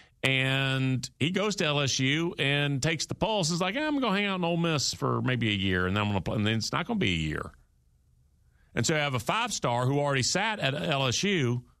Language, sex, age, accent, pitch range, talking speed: English, male, 40-59, American, 125-185 Hz, 225 wpm